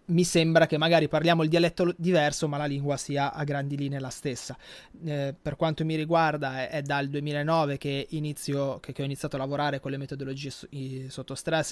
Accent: native